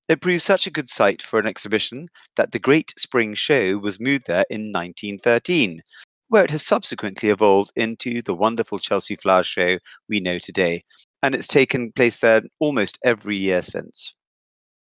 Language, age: English, 30-49